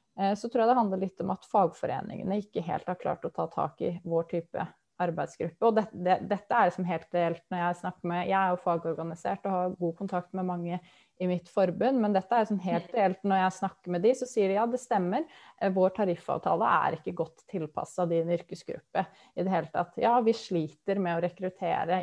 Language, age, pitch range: English, 20-39, 175-200 Hz